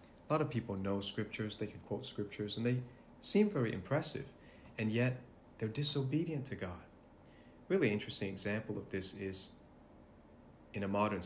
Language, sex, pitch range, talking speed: English, male, 95-125 Hz, 160 wpm